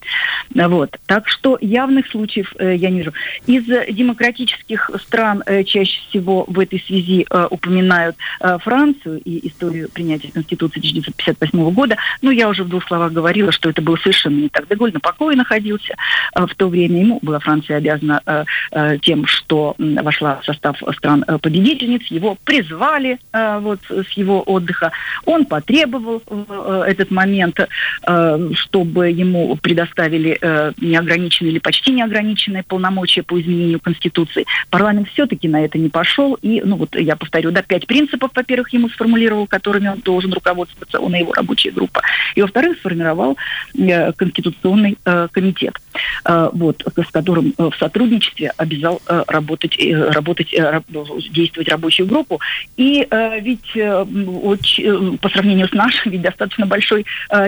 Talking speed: 150 wpm